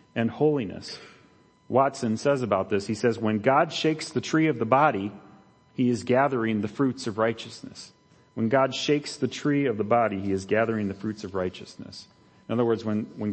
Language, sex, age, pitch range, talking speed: English, male, 40-59, 100-130 Hz, 195 wpm